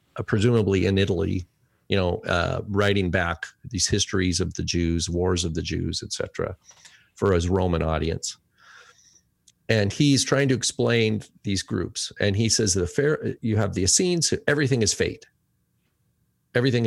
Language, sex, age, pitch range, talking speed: English, male, 50-69, 95-130 Hz, 155 wpm